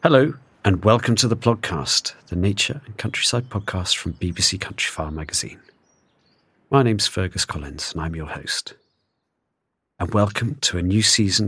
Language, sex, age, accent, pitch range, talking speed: English, male, 40-59, British, 85-110 Hz, 150 wpm